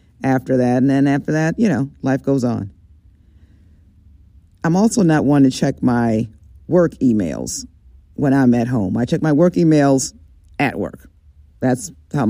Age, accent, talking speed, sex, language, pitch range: 50-69, American, 160 wpm, female, English, 100-165 Hz